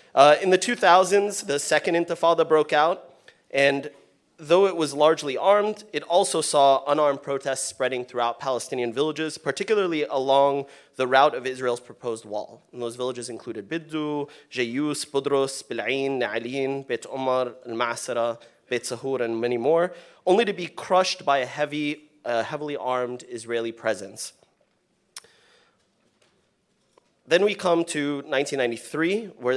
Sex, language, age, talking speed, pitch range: male, English, 30-49, 135 wpm, 125-165 Hz